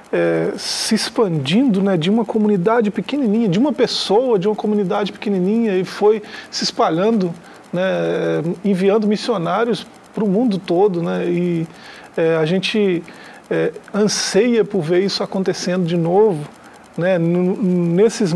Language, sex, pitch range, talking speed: Portuguese, male, 175-215 Hz, 135 wpm